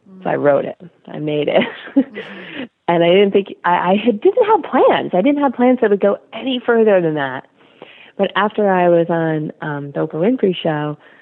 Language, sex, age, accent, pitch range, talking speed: English, female, 30-49, American, 145-195 Hz, 200 wpm